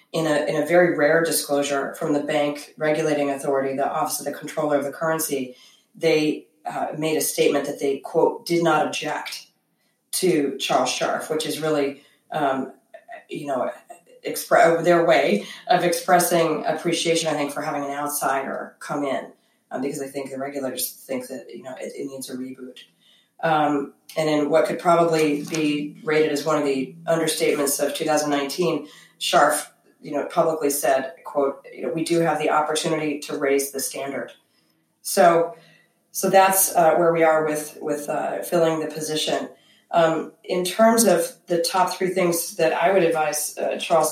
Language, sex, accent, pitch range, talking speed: English, female, American, 150-170 Hz, 175 wpm